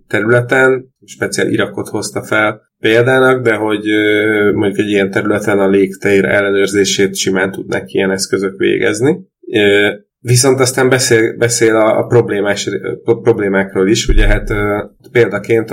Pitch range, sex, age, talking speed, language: 100-120 Hz, male, 20-39, 120 wpm, Hungarian